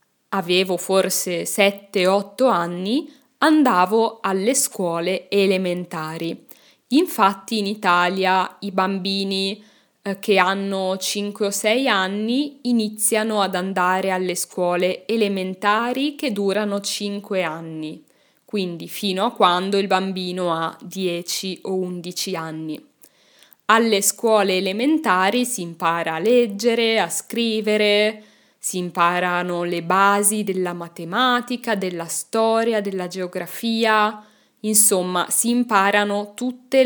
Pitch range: 180-220 Hz